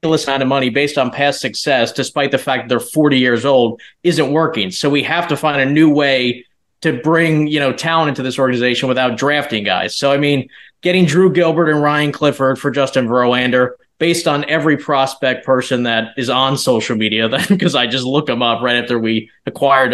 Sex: male